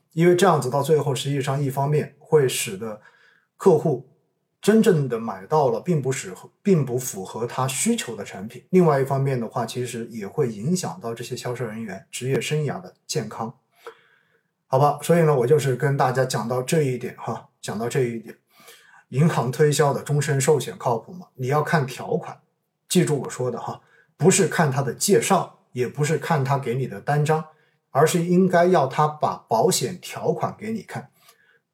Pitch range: 130-170 Hz